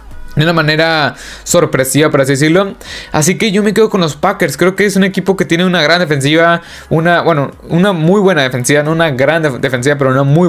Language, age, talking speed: Spanish, 20-39, 225 wpm